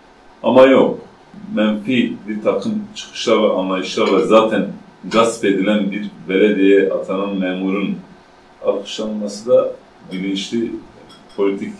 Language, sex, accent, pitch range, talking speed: Turkish, male, native, 100-125 Hz, 100 wpm